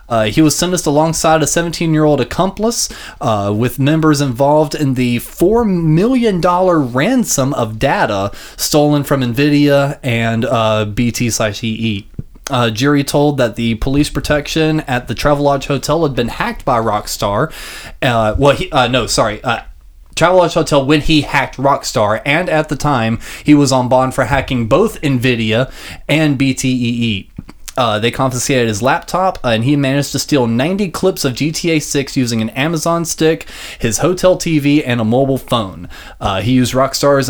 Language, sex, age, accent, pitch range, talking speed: English, male, 20-39, American, 120-150 Hz, 160 wpm